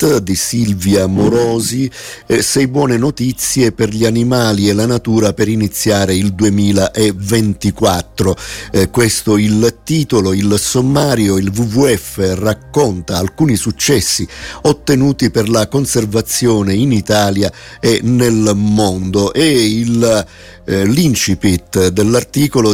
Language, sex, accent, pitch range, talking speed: Italian, male, native, 100-120 Hz, 110 wpm